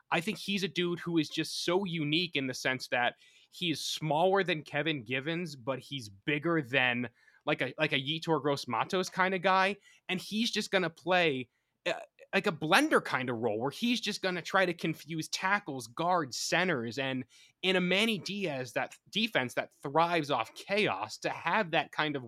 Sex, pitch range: male, 135-175 Hz